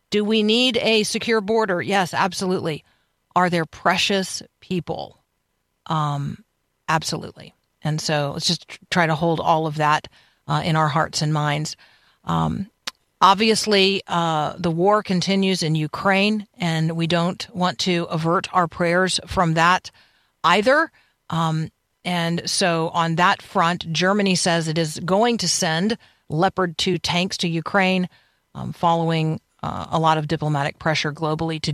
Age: 50-69